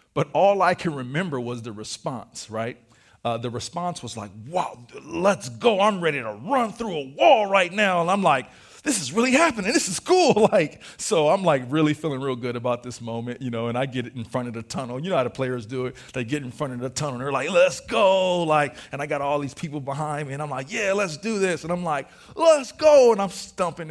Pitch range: 130-195 Hz